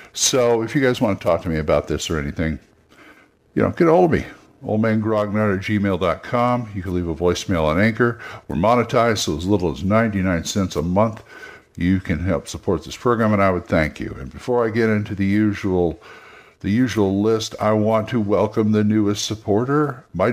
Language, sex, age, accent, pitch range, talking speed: English, male, 60-79, American, 90-110 Hz, 205 wpm